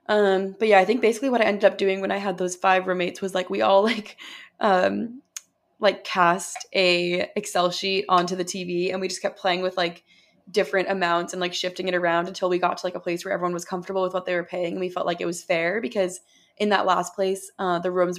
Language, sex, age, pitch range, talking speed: English, female, 20-39, 175-200 Hz, 250 wpm